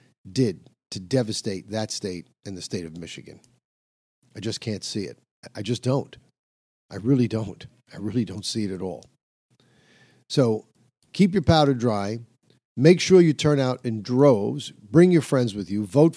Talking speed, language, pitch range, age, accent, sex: 170 wpm, English, 110-145 Hz, 50-69, American, male